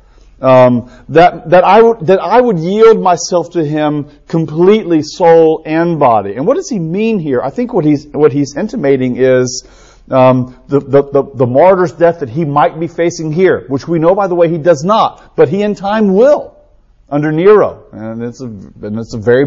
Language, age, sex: English, 40-59, male